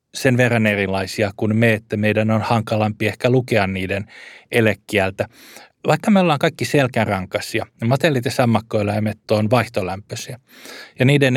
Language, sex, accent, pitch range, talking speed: Finnish, male, native, 105-125 Hz, 130 wpm